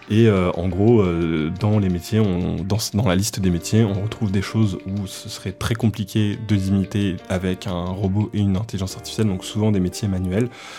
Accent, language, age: French, French, 20-39